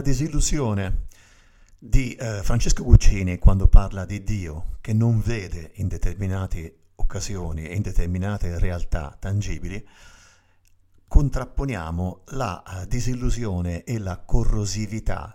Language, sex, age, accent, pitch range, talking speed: Italian, male, 50-69, native, 90-115 Hz, 100 wpm